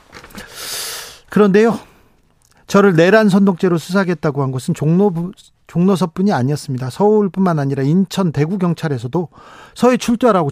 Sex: male